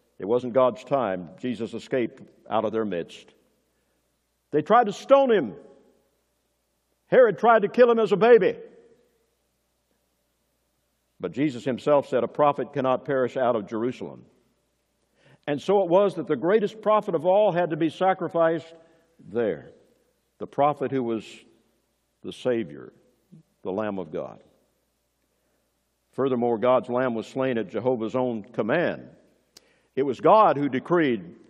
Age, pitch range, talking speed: 60-79, 125-165 Hz, 140 wpm